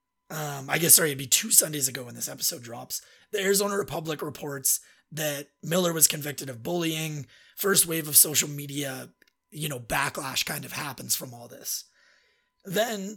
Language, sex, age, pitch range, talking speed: English, male, 30-49, 140-180 Hz, 175 wpm